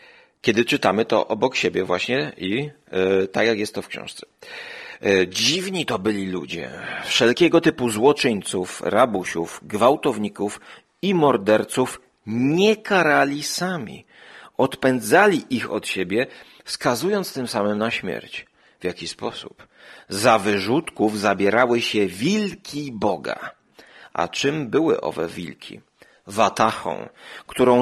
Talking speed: 110 wpm